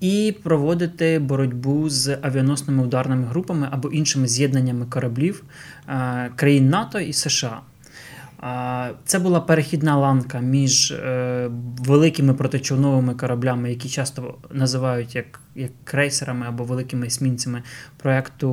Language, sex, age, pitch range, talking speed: Ukrainian, male, 20-39, 125-145 Hz, 105 wpm